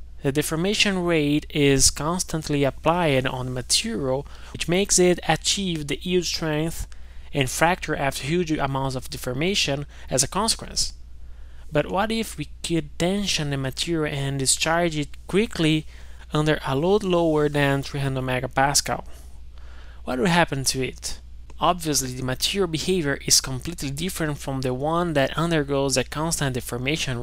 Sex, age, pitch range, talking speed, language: male, 20-39, 130-165 Hz, 145 wpm, English